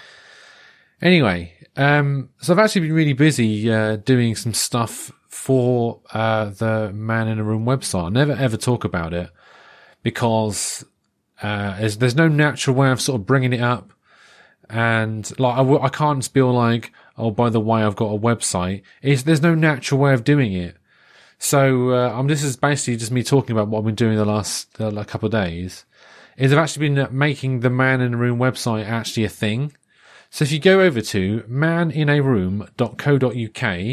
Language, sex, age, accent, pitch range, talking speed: English, male, 30-49, British, 110-140 Hz, 185 wpm